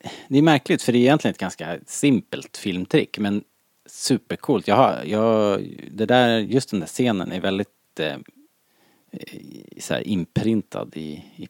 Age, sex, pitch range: 30-49, male, 90-115 Hz